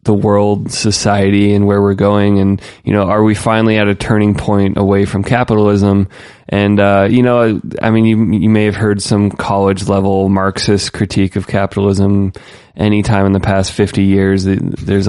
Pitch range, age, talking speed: 100-105 Hz, 20-39, 180 wpm